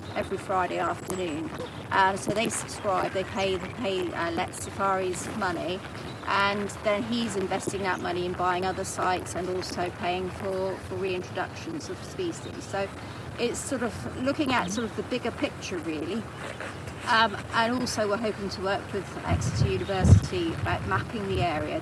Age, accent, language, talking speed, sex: 30-49, British, English, 160 wpm, female